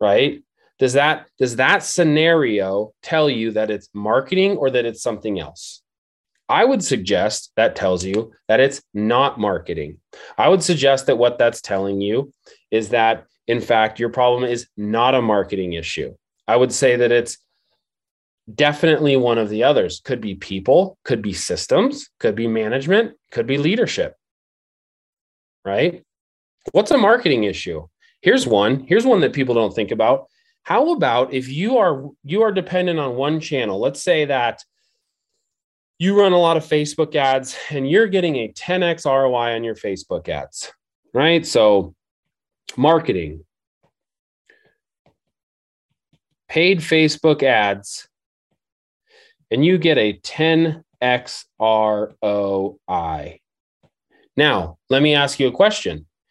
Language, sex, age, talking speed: English, male, 30-49, 140 wpm